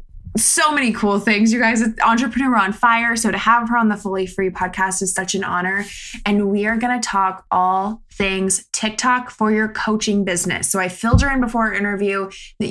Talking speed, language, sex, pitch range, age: 210 wpm, English, female, 185-225 Hz, 20-39